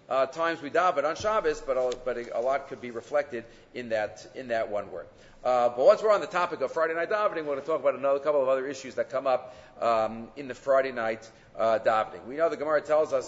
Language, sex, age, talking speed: English, male, 40-59, 260 wpm